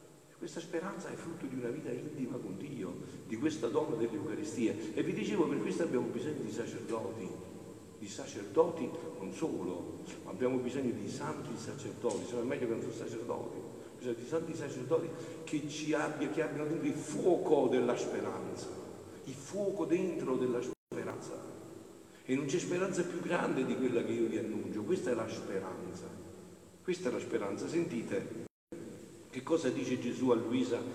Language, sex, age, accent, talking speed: Italian, male, 50-69, native, 165 wpm